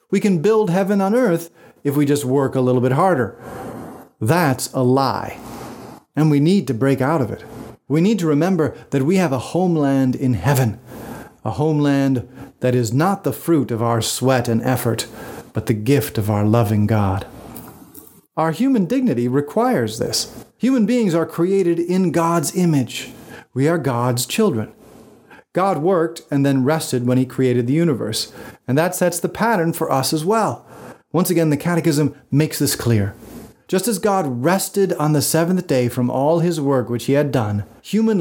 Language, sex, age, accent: English, male, 40-59, American